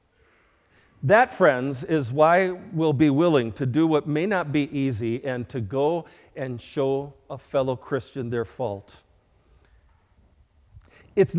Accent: American